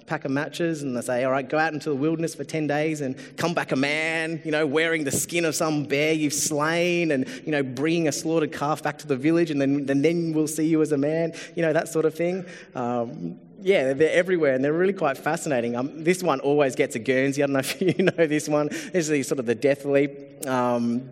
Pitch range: 140-165 Hz